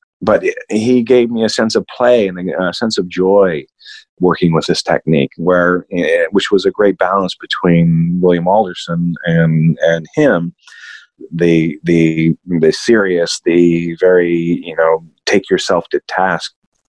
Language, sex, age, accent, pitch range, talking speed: English, male, 30-49, American, 85-115 Hz, 145 wpm